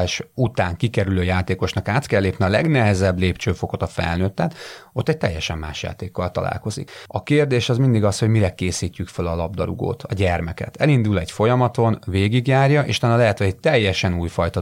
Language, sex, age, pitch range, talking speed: Hungarian, male, 30-49, 95-120 Hz, 170 wpm